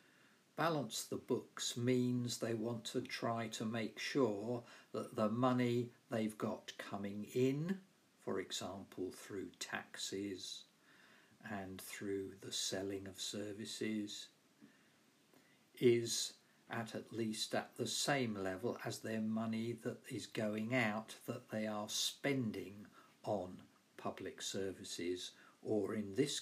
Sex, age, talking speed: male, 50-69, 120 wpm